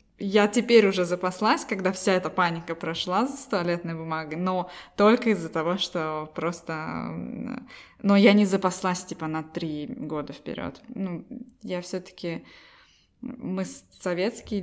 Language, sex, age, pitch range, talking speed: Russian, female, 20-39, 170-205 Hz, 130 wpm